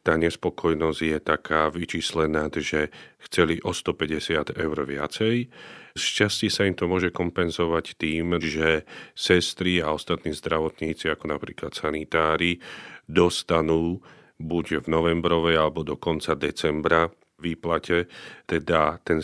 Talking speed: 115 wpm